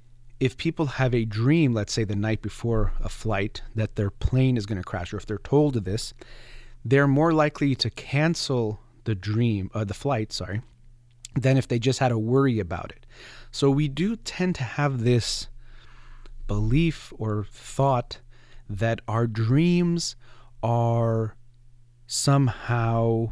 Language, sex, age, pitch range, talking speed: English, male, 30-49, 110-130 Hz, 155 wpm